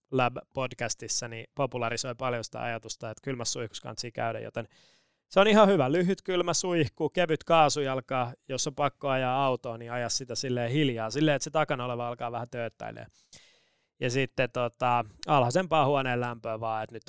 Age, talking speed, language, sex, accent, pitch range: 20-39, 170 wpm, Finnish, male, native, 120-150 Hz